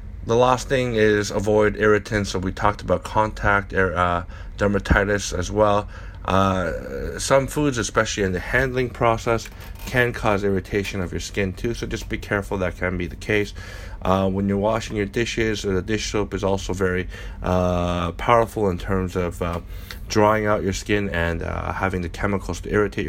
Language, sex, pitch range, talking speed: English, male, 90-110 Hz, 180 wpm